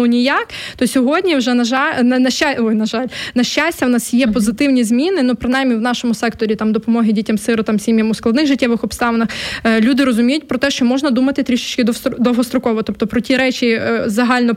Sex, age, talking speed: female, 20-39, 180 wpm